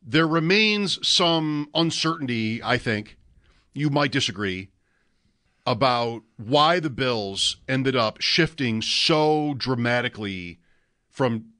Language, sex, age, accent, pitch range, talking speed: English, male, 50-69, American, 115-155 Hz, 100 wpm